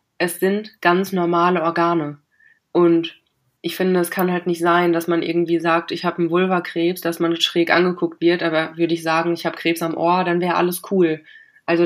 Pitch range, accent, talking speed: 170-190 Hz, German, 200 wpm